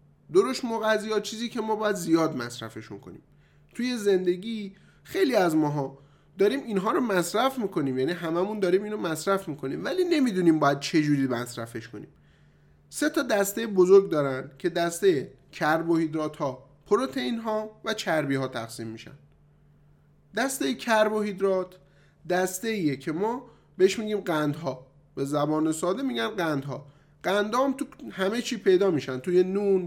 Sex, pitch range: male, 155-215 Hz